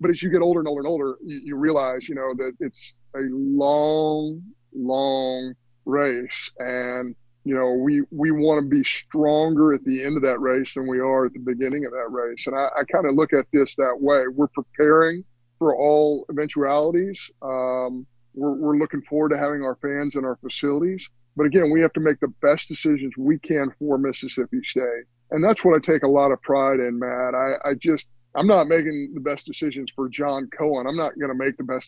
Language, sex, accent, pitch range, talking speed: English, male, American, 130-155 Hz, 215 wpm